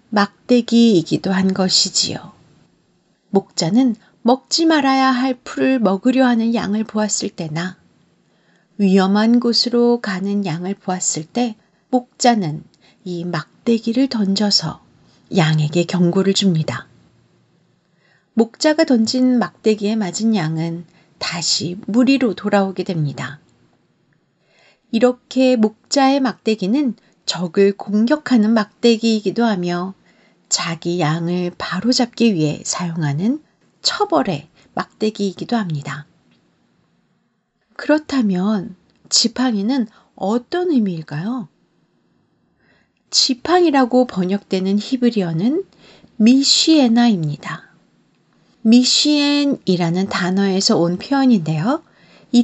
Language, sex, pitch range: Korean, female, 180-250 Hz